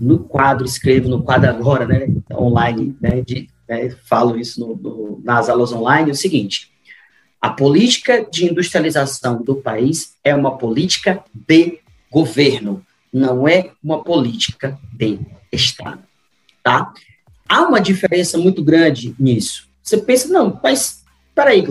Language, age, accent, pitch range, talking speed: Portuguese, 30-49, Brazilian, 120-195 Hz, 140 wpm